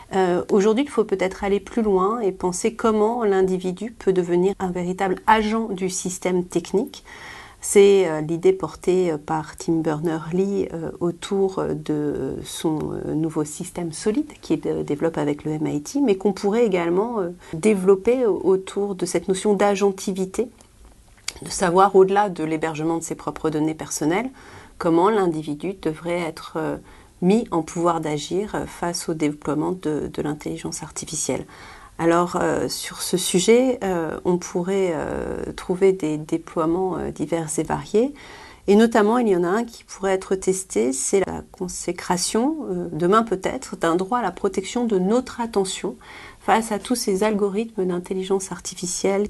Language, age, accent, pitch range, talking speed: French, 40-59, French, 165-205 Hz, 155 wpm